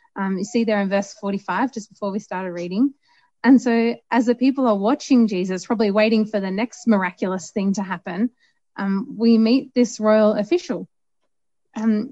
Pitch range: 215-265 Hz